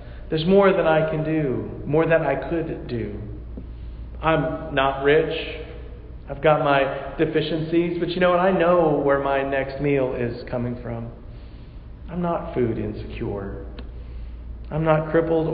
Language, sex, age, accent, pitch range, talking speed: English, male, 40-59, American, 100-160 Hz, 145 wpm